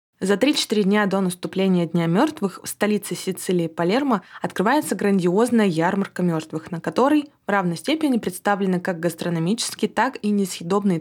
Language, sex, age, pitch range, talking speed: Russian, female, 20-39, 185-235 Hz, 135 wpm